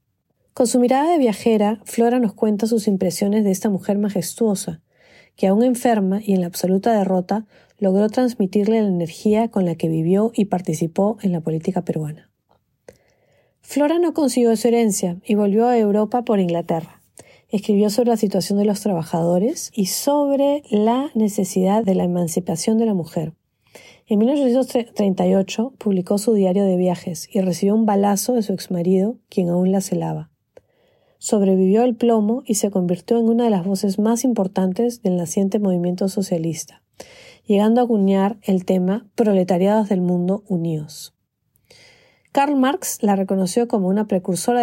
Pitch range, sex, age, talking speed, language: 185-230 Hz, female, 40-59, 155 wpm, Spanish